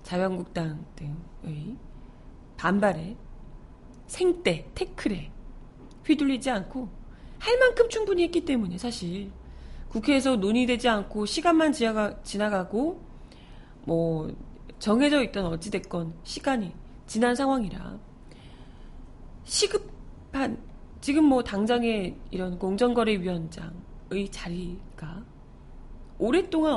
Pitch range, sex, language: 185-275 Hz, female, Korean